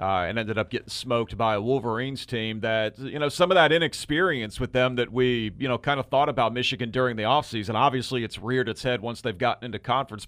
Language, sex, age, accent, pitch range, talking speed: English, male, 40-59, American, 110-130 Hz, 240 wpm